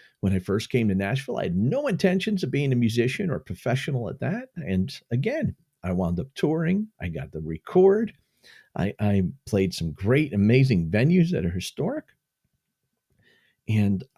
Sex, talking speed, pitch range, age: male, 165 wpm, 95-140 Hz, 50-69